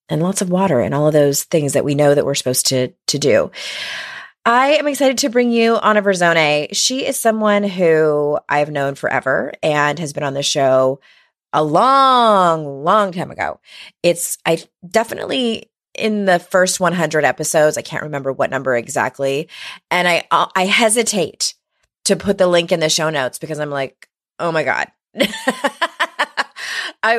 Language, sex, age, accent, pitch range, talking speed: English, female, 30-49, American, 150-220 Hz, 170 wpm